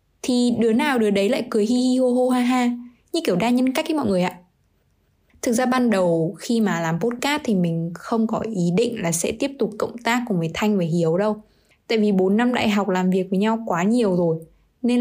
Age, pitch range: 20-39, 190-245 Hz